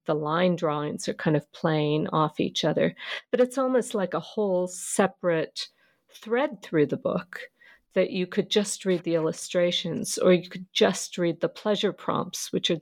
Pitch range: 170-205 Hz